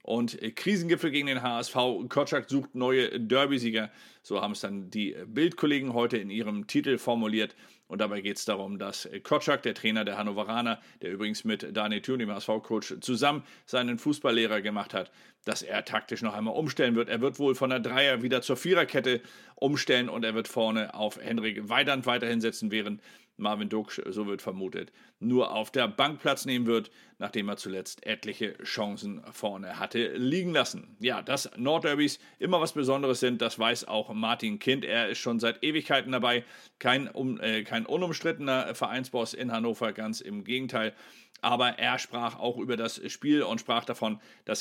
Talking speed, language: 175 wpm, German